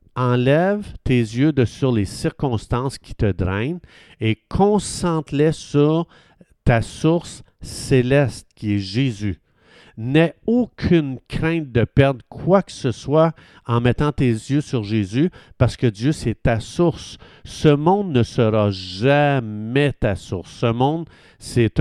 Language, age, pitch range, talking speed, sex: Italian, 50-69, 115-150 Hz, 135 wpm, male